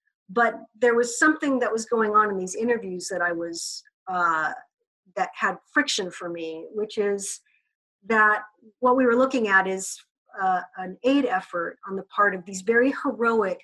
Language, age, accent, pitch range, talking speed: English, 50-69, American, 190-240 Hz, 175 wpm